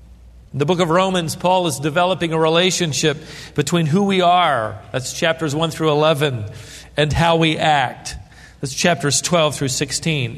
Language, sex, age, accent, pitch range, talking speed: English, male, 40-59, American, 160-215 Hz, 160 wpm